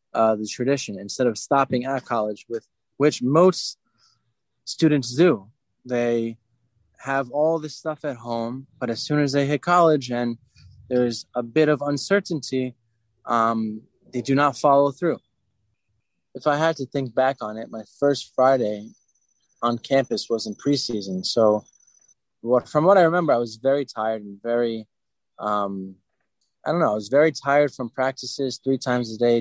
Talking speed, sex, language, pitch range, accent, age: 165 wpm, male, English, 115-145 Hz, American, 20-39